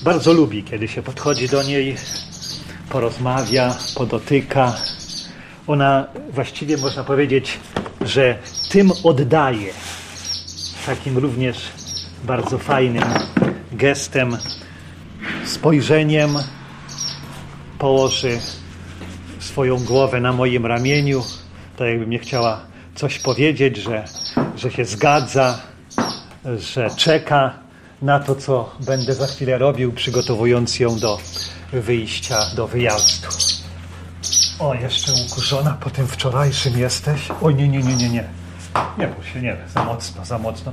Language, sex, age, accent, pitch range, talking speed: Polish, male, 40-59, native, 95-135 Hz, 110 wpm